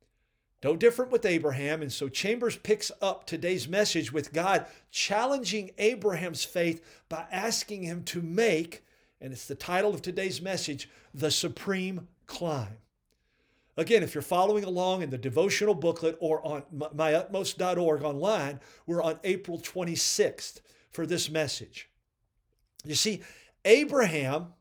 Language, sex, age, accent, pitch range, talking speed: English, male, 50-69, American, 155-215 Hz, 130 wpm